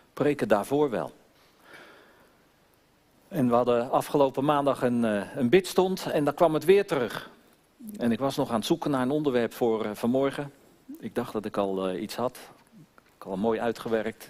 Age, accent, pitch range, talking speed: 50-69, Dutch, 125-180 Hz, 170 wpm